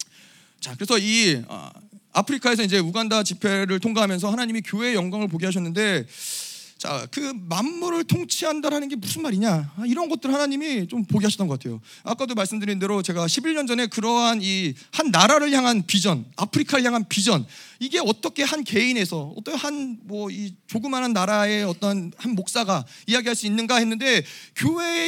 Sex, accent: male, native